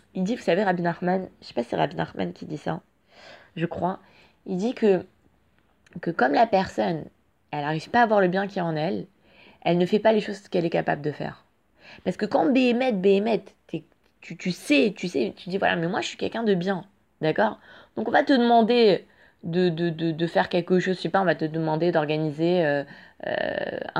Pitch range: 170-220 Hz